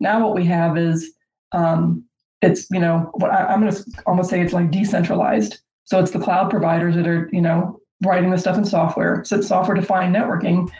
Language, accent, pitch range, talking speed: English, American, 175-200 Hz, 205 wpm